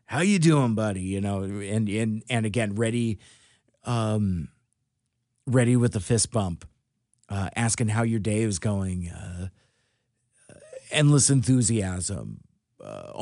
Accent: American